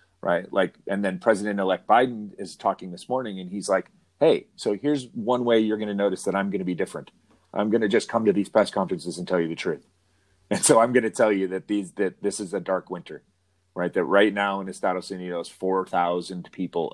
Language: English